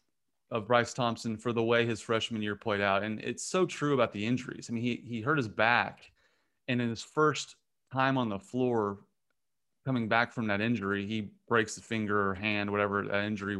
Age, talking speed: 30-49, 205 wpm